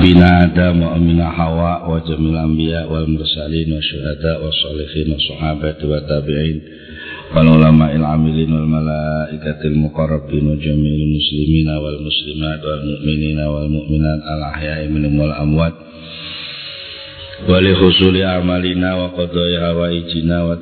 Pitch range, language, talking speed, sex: 75-85 Hz, Indonesian, 65 wpm, male